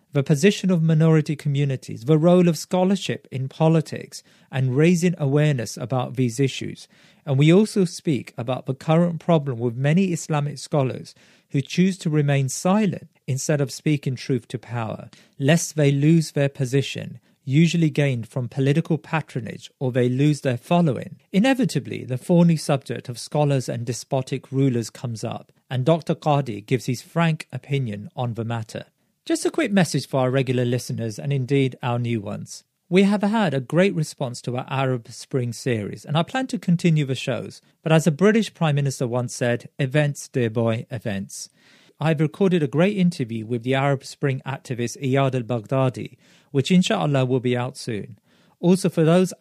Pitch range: 130-165 Hz